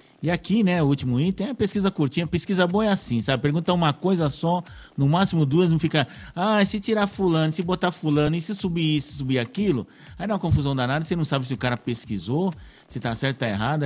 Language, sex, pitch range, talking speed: Portuguese, male, 120-165 Hz, 235 wpm